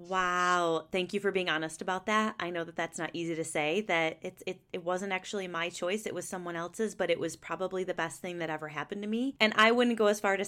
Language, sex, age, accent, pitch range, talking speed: English, female, 30-49, American, 175-215 Hz, 270 wpm